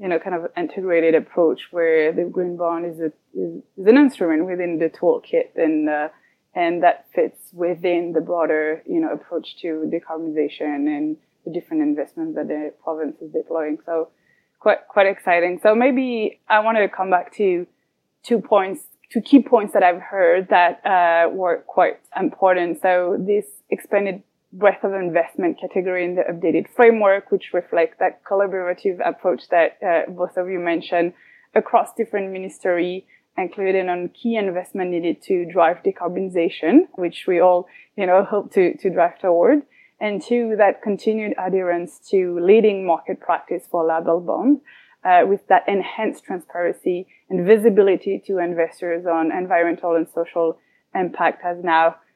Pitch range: 170-210 Hz